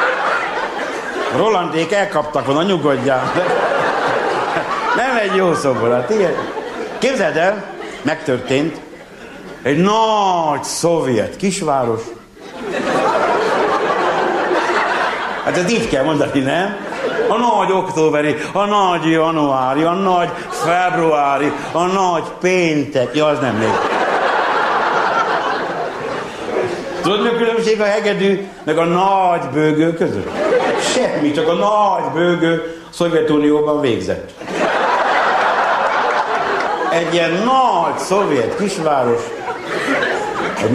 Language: Hungarian